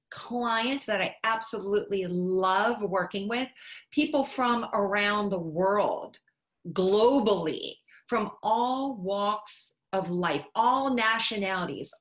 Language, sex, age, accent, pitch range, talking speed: English, female, 40-59, American, 195-235 Hz, 100 wpm